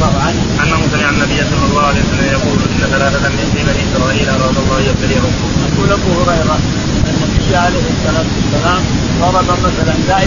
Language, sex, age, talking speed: Arabic, male, 30-49, 130 wpm